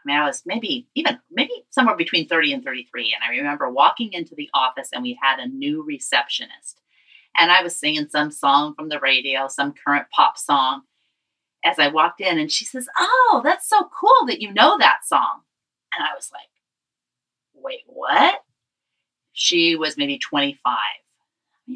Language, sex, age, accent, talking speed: English, female, 30-49, American, 175 wpm